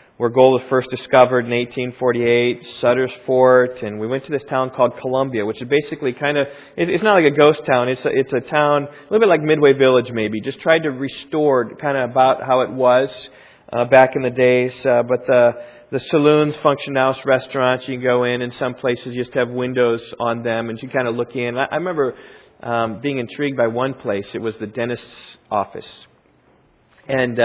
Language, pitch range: English, 120-135 Hz